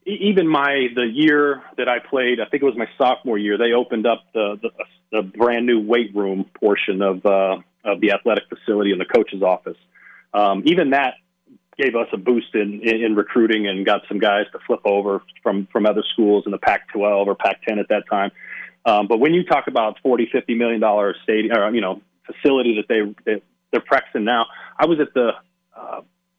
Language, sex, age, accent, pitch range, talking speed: English, male, 40-59, American, 105-130 Hz, 210 wpm